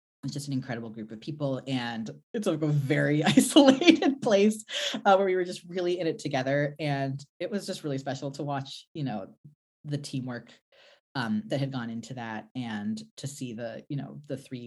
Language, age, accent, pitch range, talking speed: English, 20-39, American, 115-175 Hz, 195 wpm